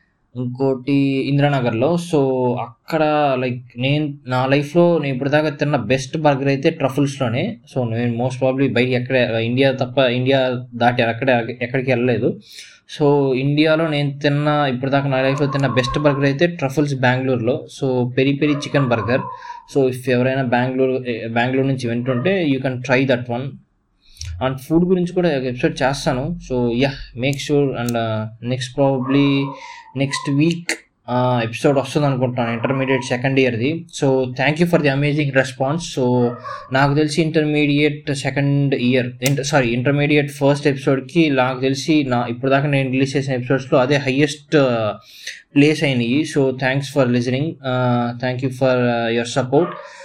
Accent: native